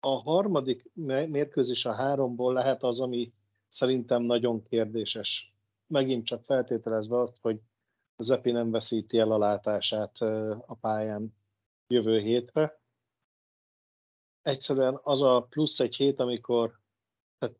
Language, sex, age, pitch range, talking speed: Hungarian, male, 50-69, 115-130 Hz, 115 wpm